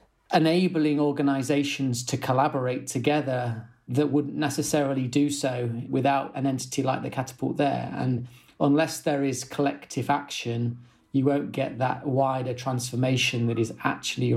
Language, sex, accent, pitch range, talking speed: English, male, British, 120-140 Hz, 135 wpm